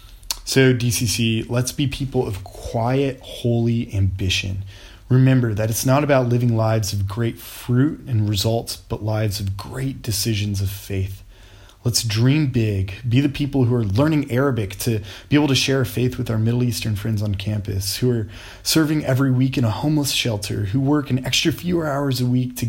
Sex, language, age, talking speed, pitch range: male, English, 20-39, 180 wpm, 100-125 Hz